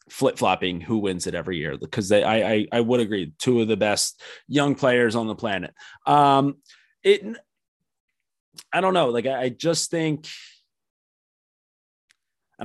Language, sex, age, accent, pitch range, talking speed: English, male, 20-39, American, 110-140 Hz, 155 wpm